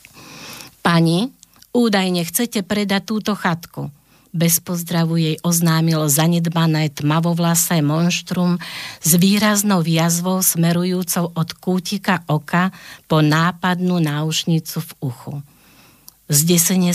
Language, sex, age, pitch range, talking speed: Slovak, female, 50-69, 155-185 Hz, 90 wpm